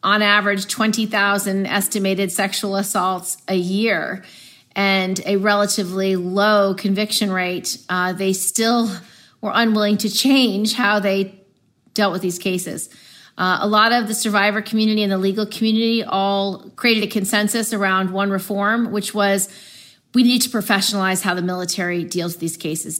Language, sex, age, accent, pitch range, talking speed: English, female, 40-59, American, 185-210 Hz, 150 wpm